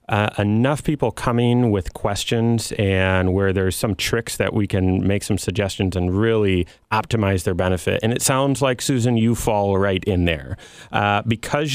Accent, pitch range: American, 100-125 Hz